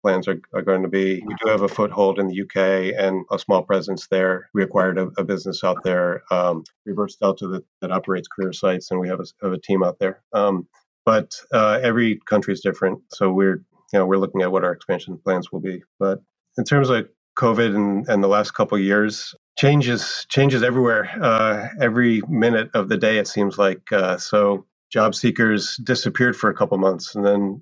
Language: English